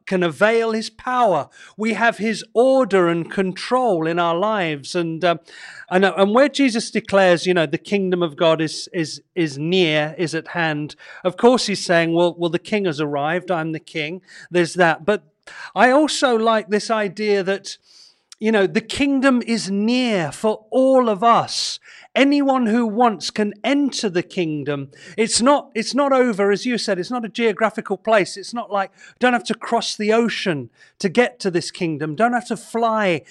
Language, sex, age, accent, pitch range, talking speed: English, male, 40-59, British, 175-230 Hz, 185 wpm